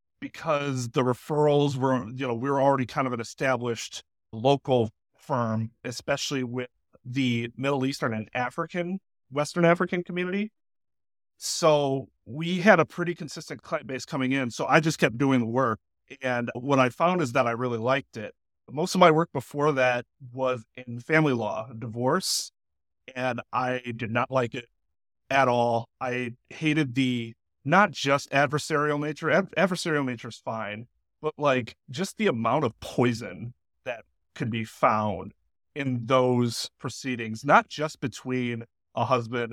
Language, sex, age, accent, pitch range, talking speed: English, male, 40-59, American, 115-145 Hz, 155 wpm